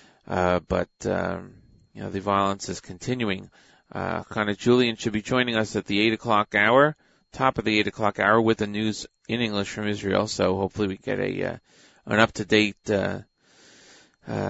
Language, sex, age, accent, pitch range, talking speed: English, male, 30-49, American, 100-130 Hz, 180 wpm